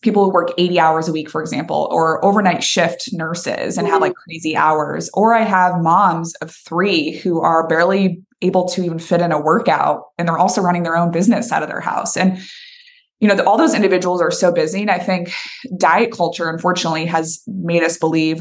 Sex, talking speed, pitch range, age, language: female, 210 wpm, 170-210 Hz, 20-39, English